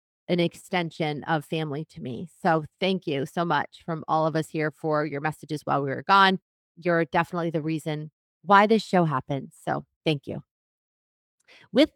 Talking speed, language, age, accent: 175 wpm, English, 30-49, American